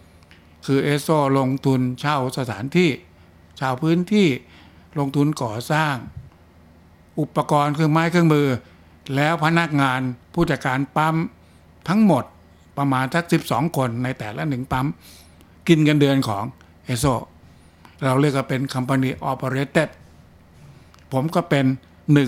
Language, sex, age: Thai, male, 60-79